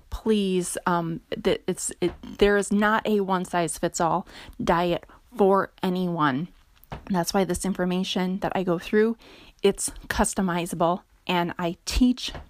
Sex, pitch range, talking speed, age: female, 180-210 Hz, 145 wpm, 30-49